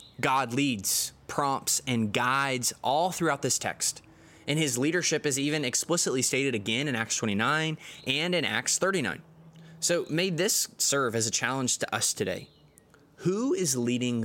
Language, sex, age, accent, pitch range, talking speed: English, male, 20-39, American, 115-155 Hz, 155 wpm